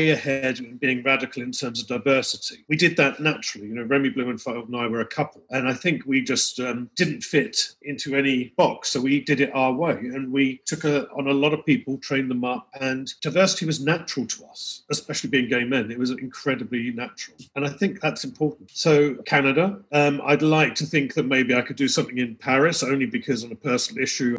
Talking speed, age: 225 wpm, 40-59